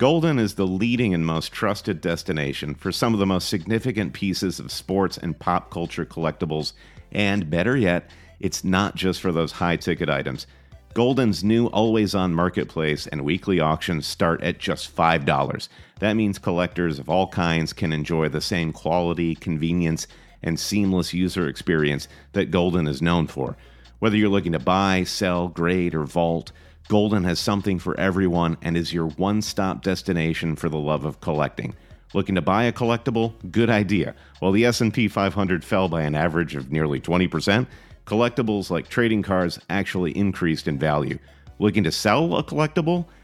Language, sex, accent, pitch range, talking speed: English, male, American, 85-105 Hz, 165 wpm